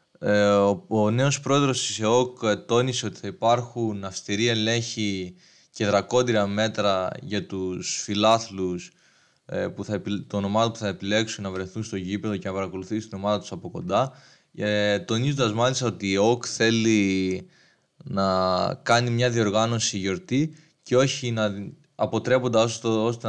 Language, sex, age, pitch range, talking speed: Greek, male, 20-39, 100-125 Hz, 130 wpm